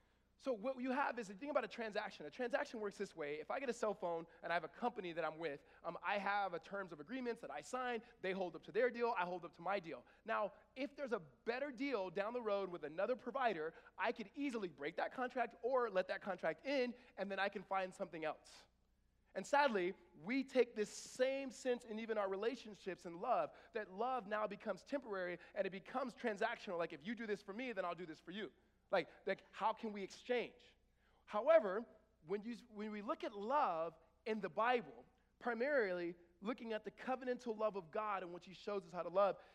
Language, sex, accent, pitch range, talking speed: English, male, American, 180-240 Hz, 225 wpm